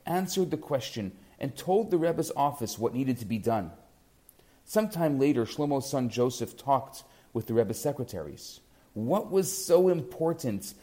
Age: 40-59